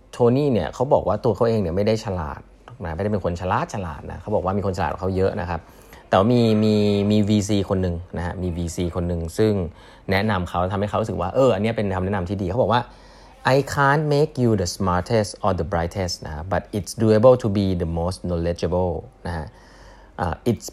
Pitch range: 90-115 Hz